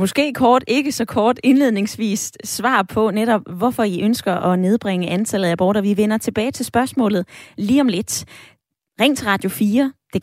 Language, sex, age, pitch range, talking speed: Danish, female, 20-39, 185-240 Hz, 175 wpm